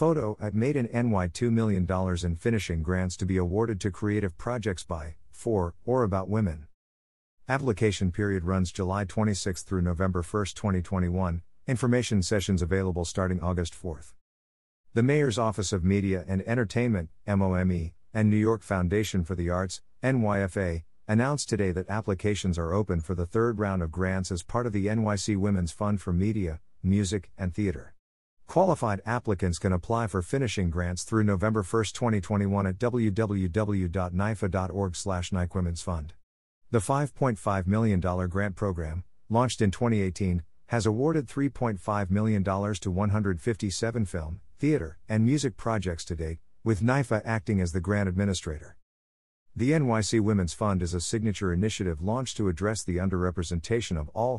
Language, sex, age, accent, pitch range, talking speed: English, male, 50-69, American, 90-110 Hz, 150 wpm